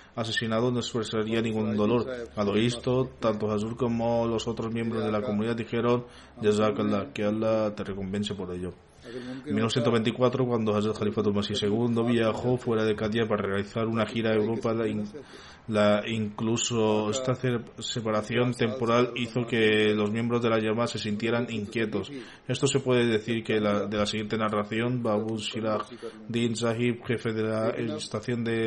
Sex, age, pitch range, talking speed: male, 20-39, 110-120 Hz, 165 wpm